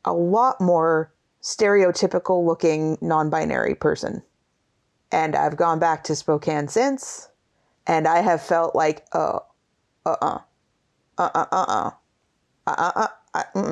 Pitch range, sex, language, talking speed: 160-220 Hz, female, English, 125 wpm